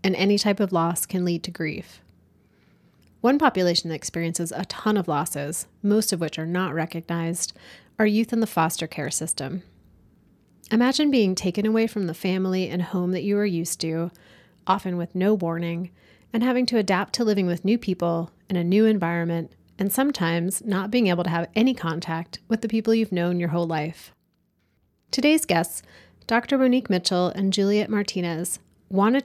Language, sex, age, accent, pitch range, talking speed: English, female, 30-49, American, 170-210 Hz, 180 wpm